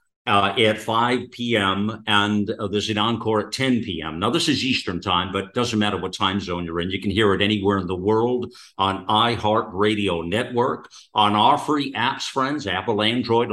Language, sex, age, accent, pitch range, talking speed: English, male, 50-69, American, 105-130 Hz, 195 wpm